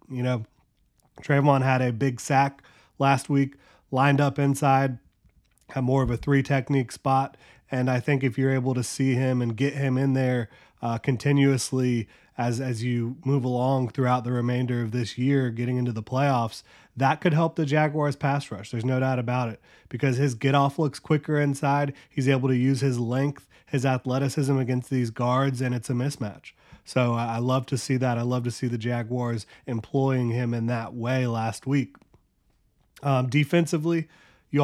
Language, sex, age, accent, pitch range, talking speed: English, male, 30-49, American, 120-135 Hz, 180 wpm